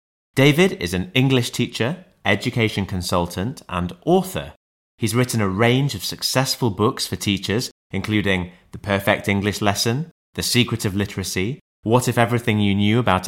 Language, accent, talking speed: English, British, 150 wpm